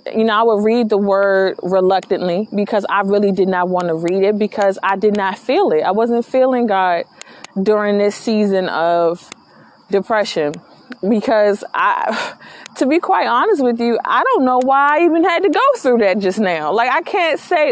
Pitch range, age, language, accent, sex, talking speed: 190-245 Hz, 20-39, English, American, female, 195 wpm